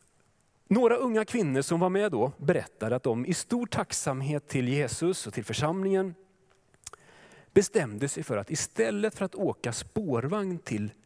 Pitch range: 140-205 Hz